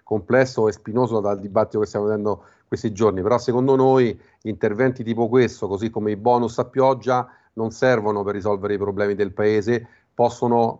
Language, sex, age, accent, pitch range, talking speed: Italian, male, 40-59, native, 105-120 Hz, 170 wpm